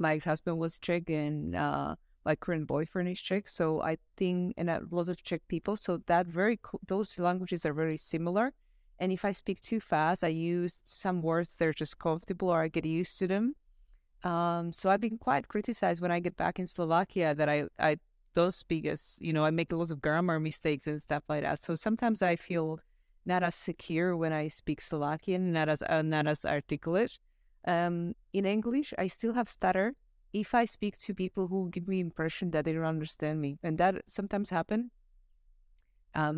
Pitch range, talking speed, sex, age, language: 155-185 Hz, 200 wpm, female, 30-49, English